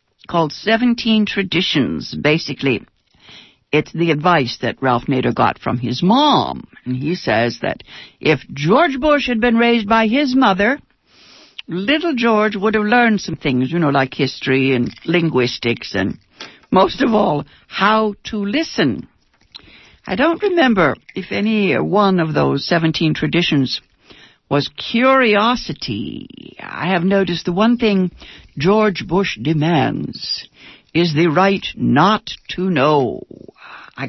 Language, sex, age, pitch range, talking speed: English, female, 60-79, 135-205 Hz, 130 wpm